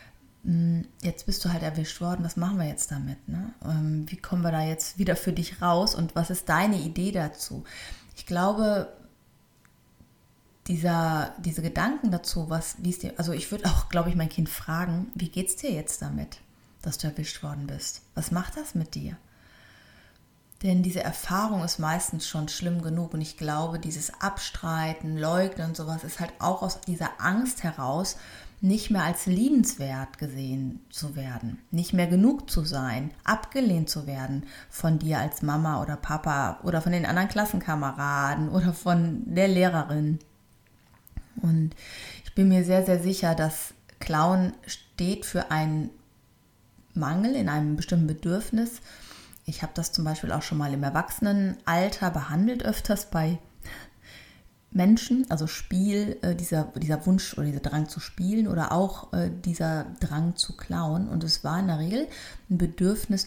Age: 30-49